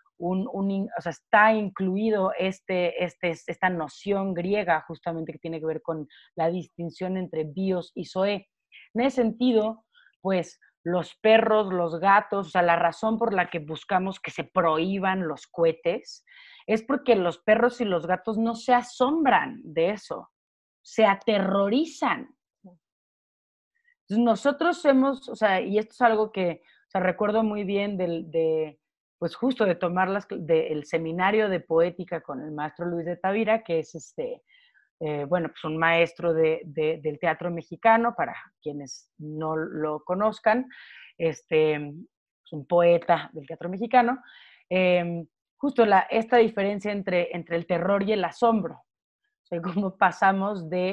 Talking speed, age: 155 wpm, 30-49